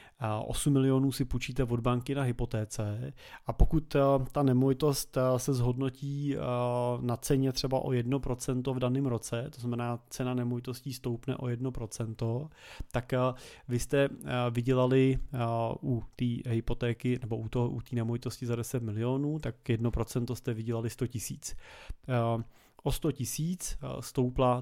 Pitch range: 120-135 Hz